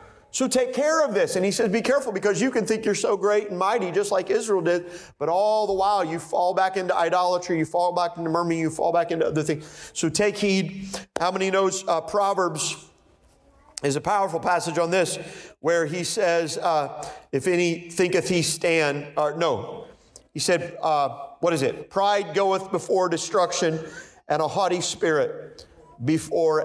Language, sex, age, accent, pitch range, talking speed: English, male, 40-59, American, 140-185 Hz, 185 wpm